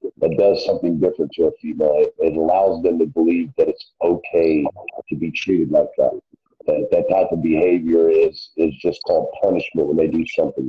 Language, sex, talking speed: English, male, 195 wpm